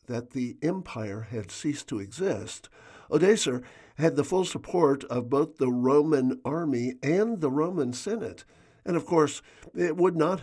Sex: male